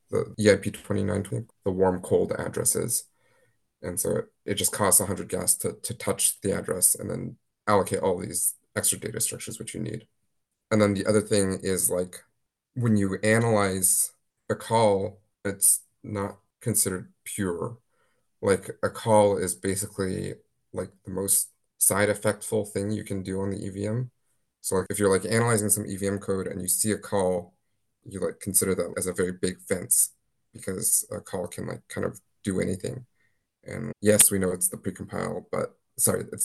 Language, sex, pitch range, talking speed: English, male, 95-105 Hz, 180 wpm